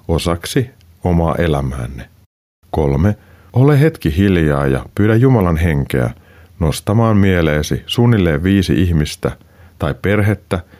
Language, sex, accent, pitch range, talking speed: Finnish, male, native, 80-105 Hz, 100 wpm